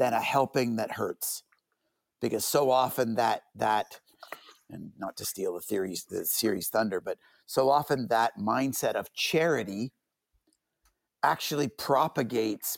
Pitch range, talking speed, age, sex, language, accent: 110-145 Hz, 130 wpm, 50-69, male, English, American